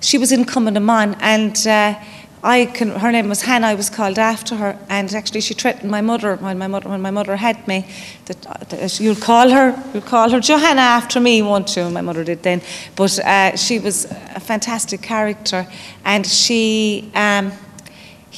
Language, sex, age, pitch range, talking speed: English, female, 30-49, 195-230 Hz, 195 wpm